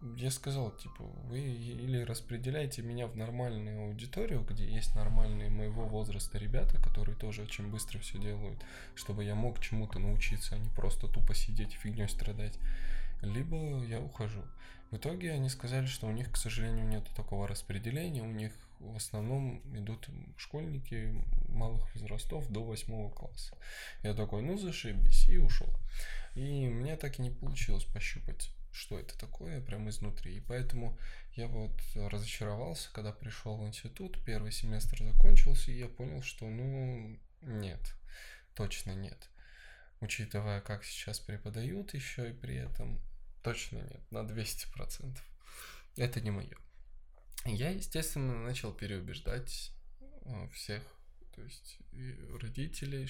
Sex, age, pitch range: male, 10-29, 105-130 Hz